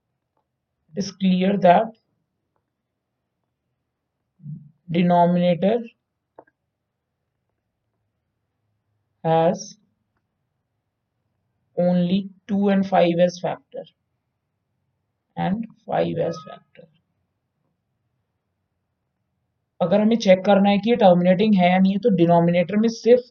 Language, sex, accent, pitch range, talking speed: Hindi, male, native, 130-190 Hz, 70 wpm